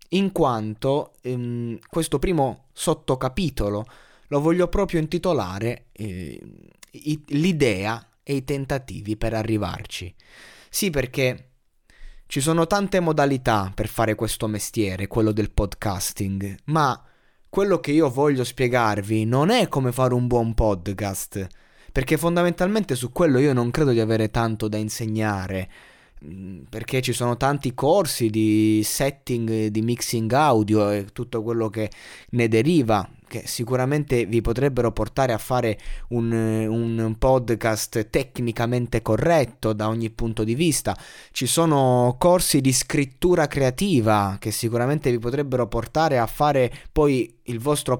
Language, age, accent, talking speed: Italian, 20-39, native, 130 wpm